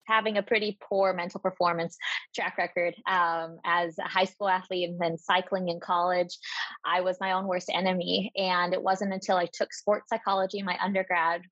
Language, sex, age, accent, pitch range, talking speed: English, female, 20-39, American, 170-195 Hz, 190 wpm